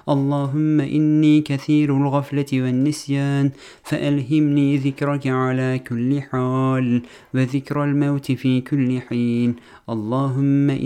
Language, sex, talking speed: Turkish, male, 90 wpm